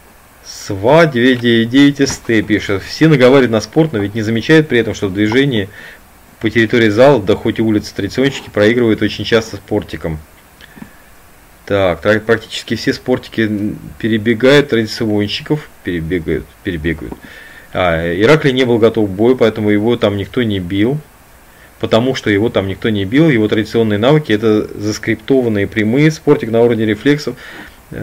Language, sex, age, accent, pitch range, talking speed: Russian, male, 30-49, native, 95-120 Hz, 135 wpm